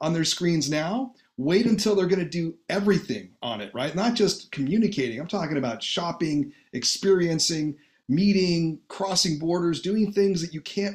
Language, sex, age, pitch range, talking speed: English, male, 40-59, 145-190 Hz, 160 wpm